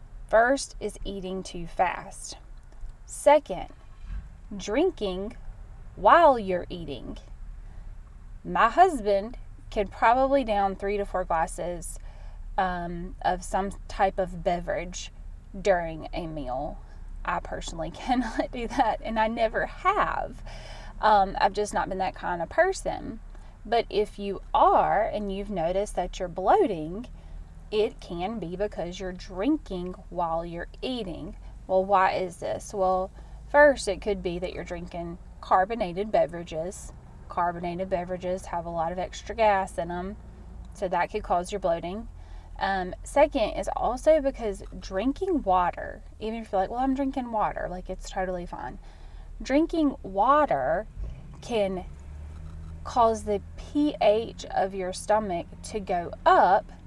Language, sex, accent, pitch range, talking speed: English, female, American, 175-230 Hz, 135 wpm